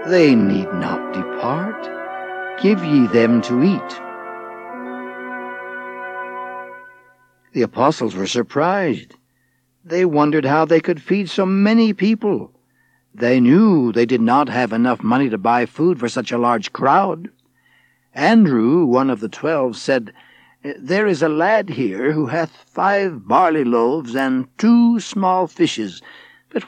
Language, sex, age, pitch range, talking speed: English, male, 60-79, 125-165 Hz, 135 wpm